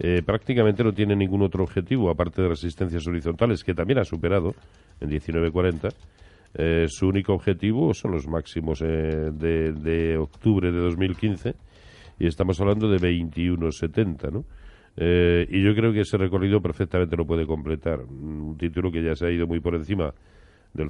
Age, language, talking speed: 40-59, Spanish, 165 wpm